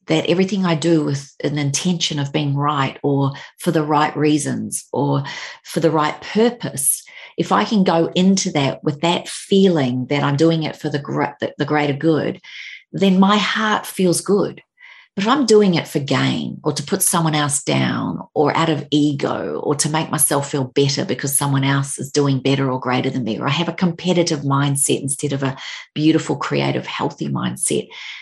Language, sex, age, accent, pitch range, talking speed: English, female, 40-59, Australian, 140-175 Hz, 190 wpm